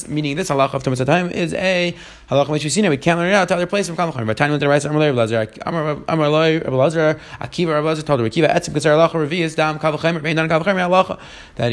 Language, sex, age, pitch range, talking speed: English, male, 30-49, 150-175 Hz, 130 wpm